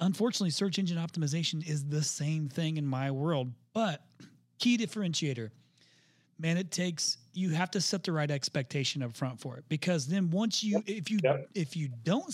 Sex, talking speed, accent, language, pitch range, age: male, 180 wpm, American, English, 130-175 Hz, 30-49